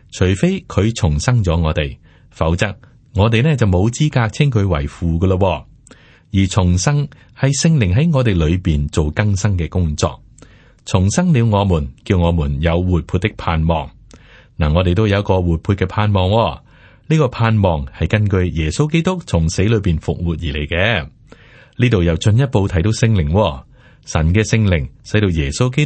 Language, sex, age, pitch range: Chinese, male, 30-49, 85-115 Hz